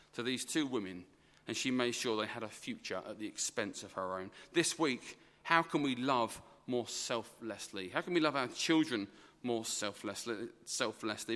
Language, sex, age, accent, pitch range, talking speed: English, male, 40-59, British, 110-150 Hz, 180 wpm